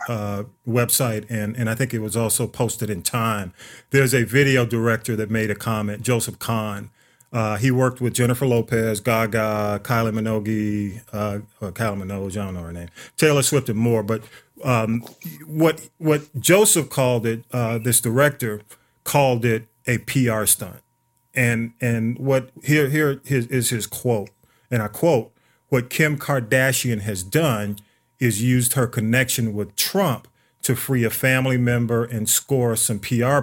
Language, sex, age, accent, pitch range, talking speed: English, male, 40-59, American, 110-130 Hz, 160 wpm